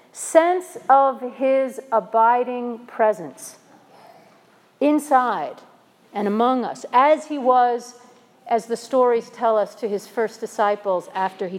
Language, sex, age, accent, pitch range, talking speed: English, female, 50-69, American, 235-300 Hz, 120 wpm